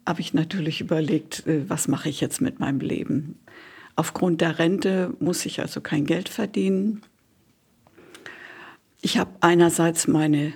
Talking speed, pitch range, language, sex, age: 135 wpm, 160-195 Hz, German, female, 60-79